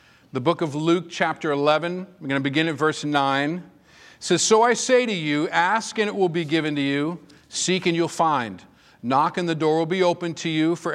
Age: 50-69